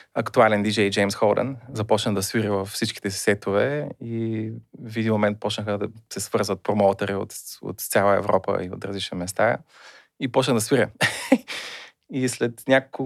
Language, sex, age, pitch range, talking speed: Bulgarian, male, 30-49, 105-125 Hz, 160 wpm